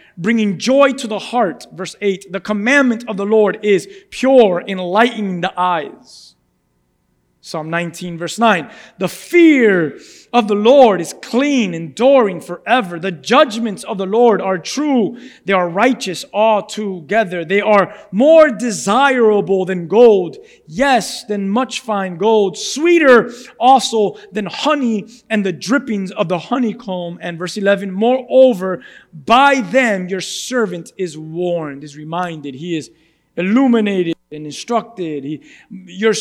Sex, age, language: male, 30-49, English